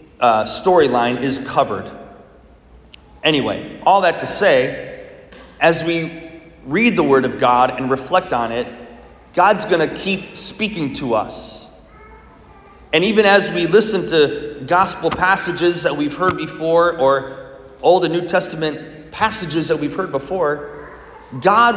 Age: 30-49